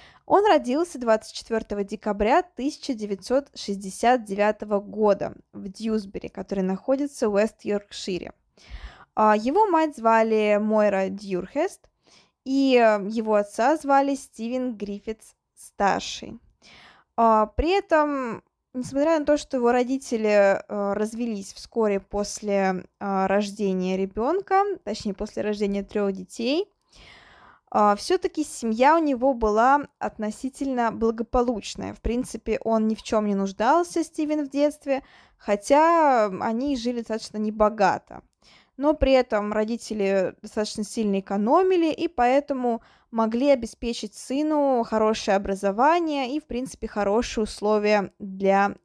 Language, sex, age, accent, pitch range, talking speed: Russian, female, 20-39, native, 210-275 Hz, 105 wpm